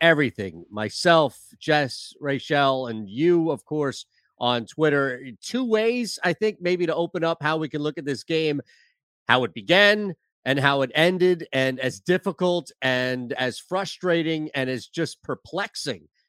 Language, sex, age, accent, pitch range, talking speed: English, male, 30-49, American, 135-170 Hz, 155 wpm